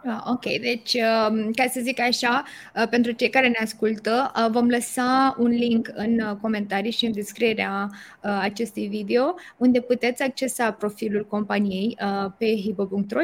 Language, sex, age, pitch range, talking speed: Romanian, female, 20-39, 210-245 Hz, 130 wpm